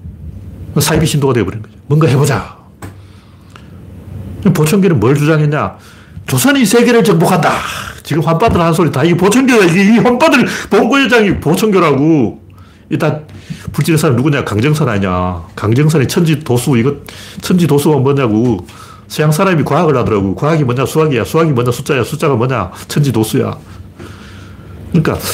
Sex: male